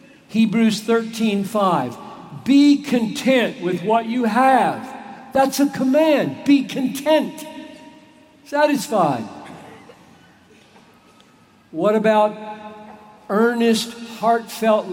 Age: 50-69